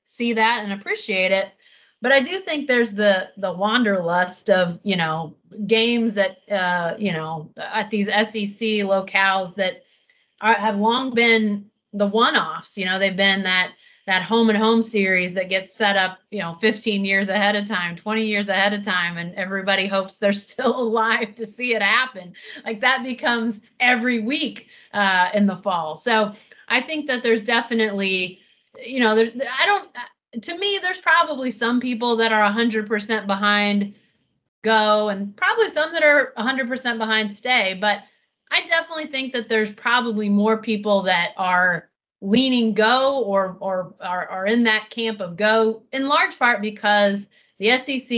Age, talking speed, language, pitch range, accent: 30-49, 170 wpm, English, 195-235 Hz, American